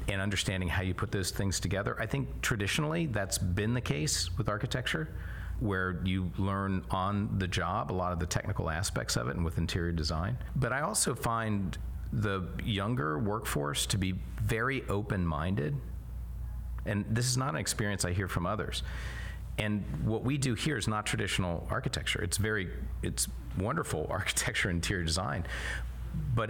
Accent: American